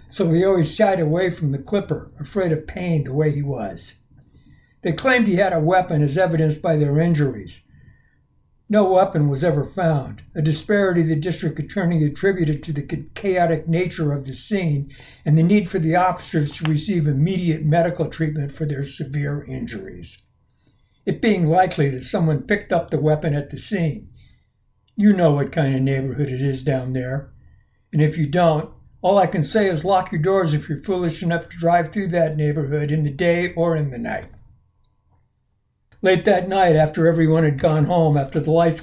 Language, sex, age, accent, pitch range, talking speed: English, male, 60-79, American, 145-180 Hz, 185 wpm